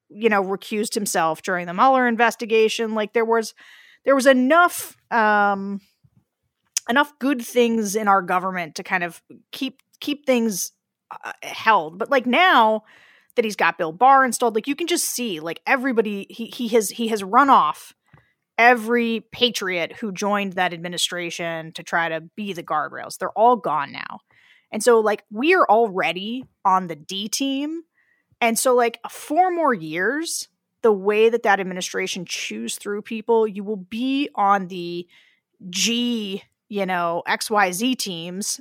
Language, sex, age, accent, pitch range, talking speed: English, female, 30-49, American, 195-255 Hz, 160 wpm